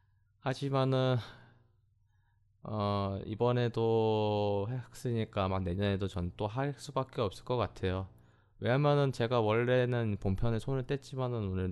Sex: male